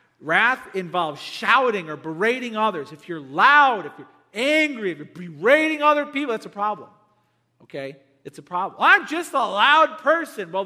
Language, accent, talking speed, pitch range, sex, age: English, American, 170 wpm, 165-220 Hz, male, 40-59